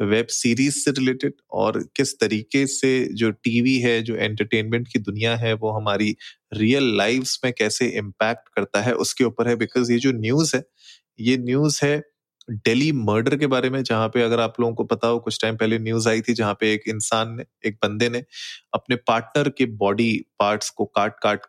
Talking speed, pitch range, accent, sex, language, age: 200 wpm, 105-125 Hz, native, male, Hindi, 30-49